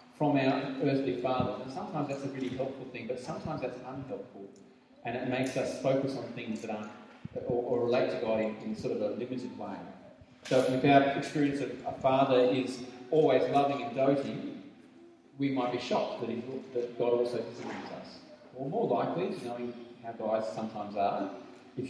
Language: English